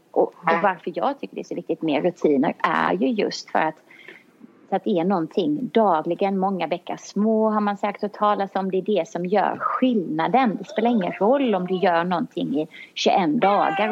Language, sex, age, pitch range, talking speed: English, female, 30-49, 170-220 Hz, 205 wpm